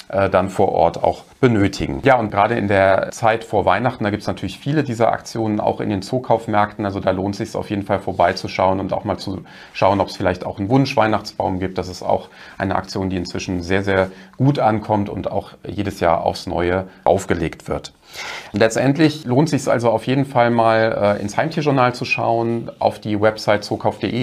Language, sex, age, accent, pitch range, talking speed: German, male, 40-59, German, 95-110 Hz, 205 wpm